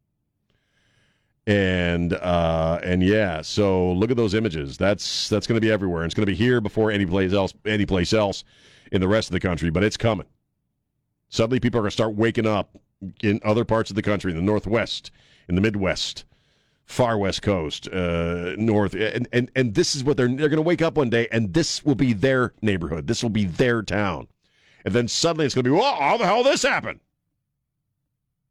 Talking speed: 200 wpm